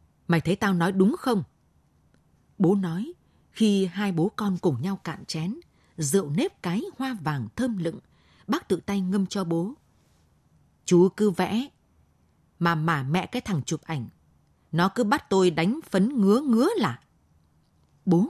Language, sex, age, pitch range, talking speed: Vietnamese, female, 20-39, 160-210 Hz, 160 wpm